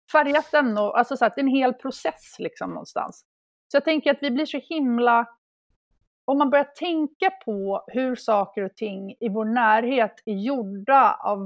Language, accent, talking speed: Swedish, native, 190 wpm